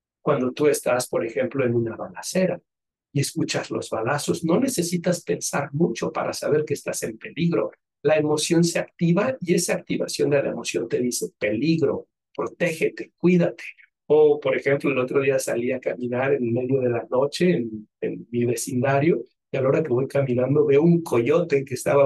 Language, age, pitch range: Spanish, 60-79, 135-185 Hz